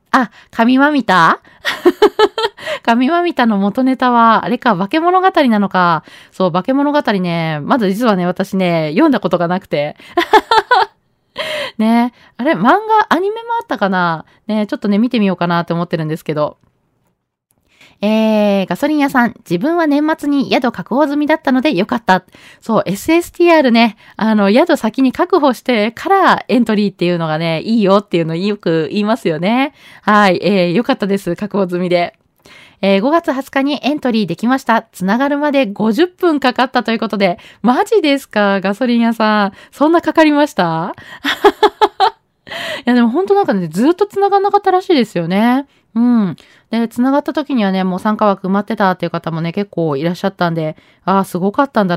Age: 20-39